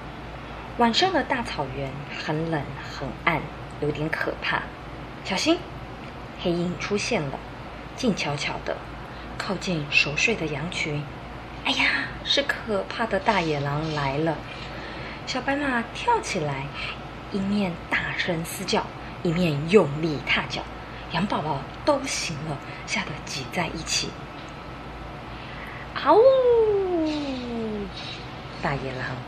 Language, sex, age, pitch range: Chinese, female, 20-39, 145-200 Hz